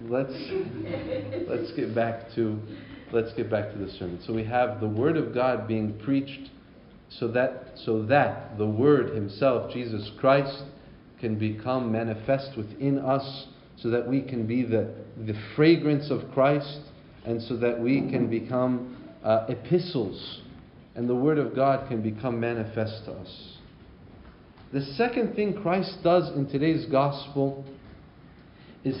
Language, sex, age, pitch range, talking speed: English, male, 40-59, 115-145 Hz, 145 wpm